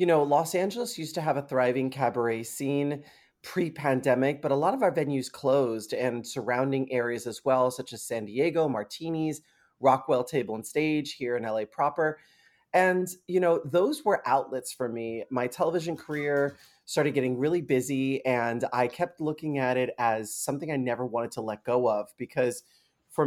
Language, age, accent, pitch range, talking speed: English, 30-49, American, 125-165 Hz, 180 wpm